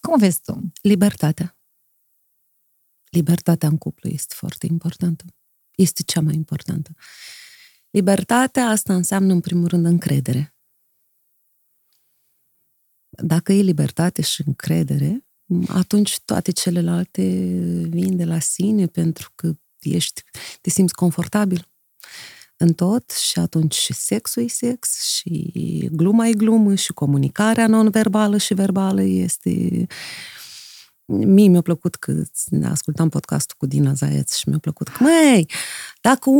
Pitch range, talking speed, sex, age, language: 175-265 Hz, 120 wpm, female, 30-49, Romanian